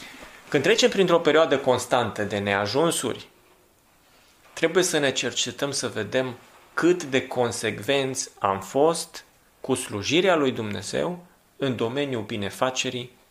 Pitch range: 120-175 Hz